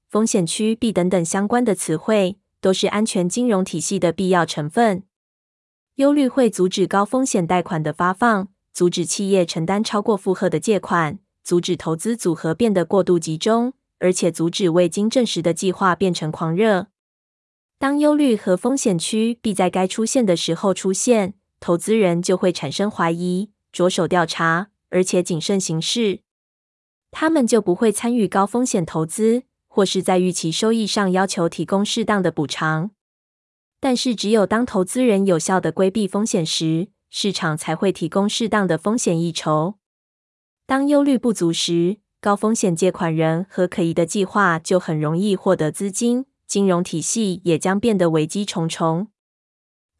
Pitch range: 175-220 Hz